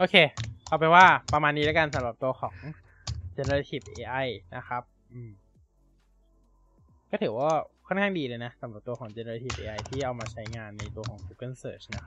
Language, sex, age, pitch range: Thai, male, 20-39, 110-160 Hz